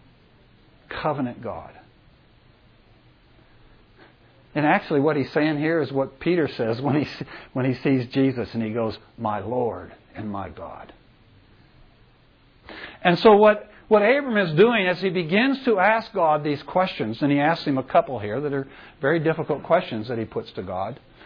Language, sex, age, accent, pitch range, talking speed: English, male, 60-79, American, 125-185 Hz, 165 wpm